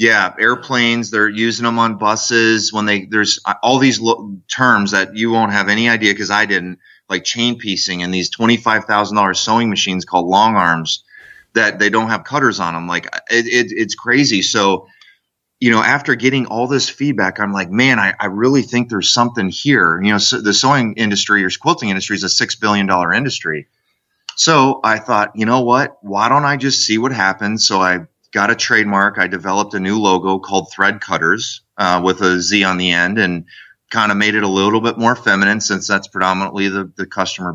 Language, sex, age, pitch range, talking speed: English, male, 30-49, 95-115 Hz, 200 wpm